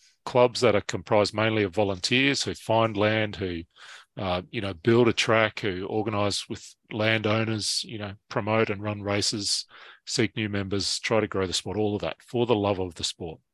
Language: English